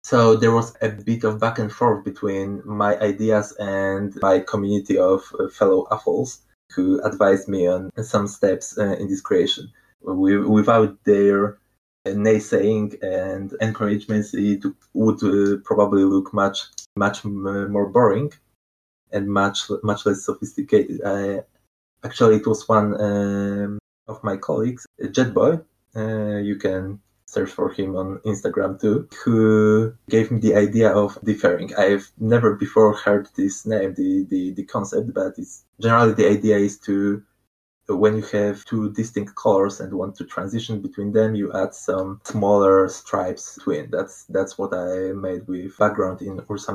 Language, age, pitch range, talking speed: English, 20-39, 95-110 Hz, 155 wpm